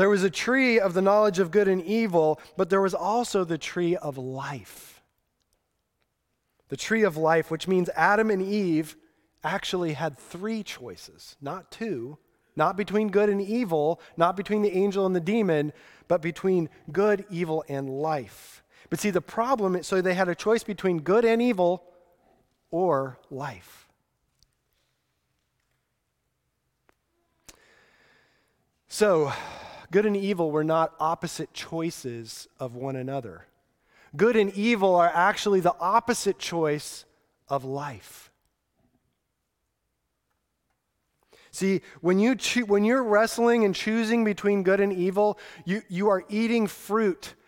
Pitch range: 160-205 Hz